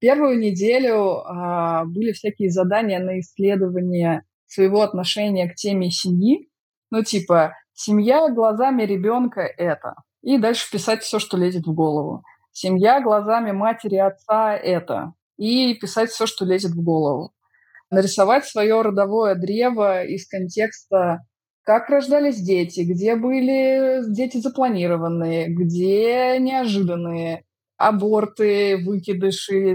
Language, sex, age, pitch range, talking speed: Russian, female, 20-39, 180-220 Hz, 115 wpm